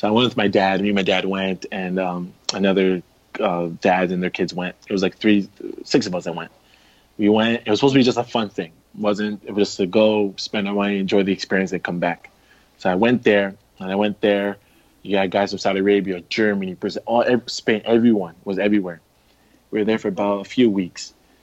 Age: 20-39